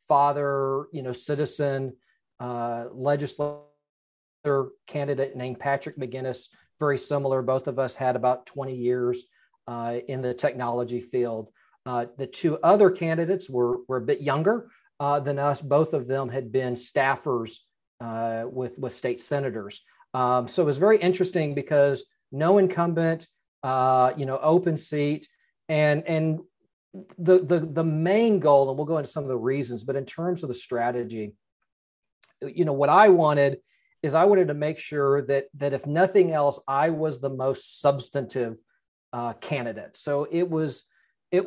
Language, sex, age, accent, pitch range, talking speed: English, male, 40-59, American, 125-155 Hz, 160 wpm